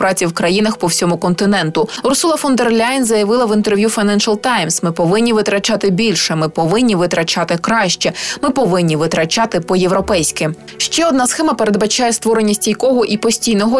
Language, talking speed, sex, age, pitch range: Ukrainian, 150 wpm, female, 20-39, 180-230 Hz